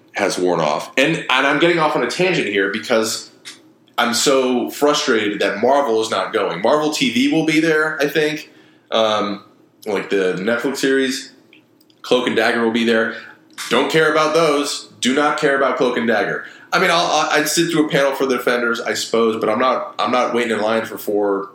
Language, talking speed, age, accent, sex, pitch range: English, 200 wpm, 20-39, American, male, 110-150 Hz